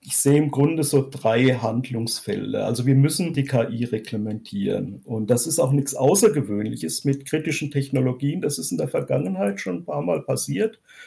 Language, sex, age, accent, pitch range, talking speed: German, male, 50-69, German, 125-155 Hz, 175 wpm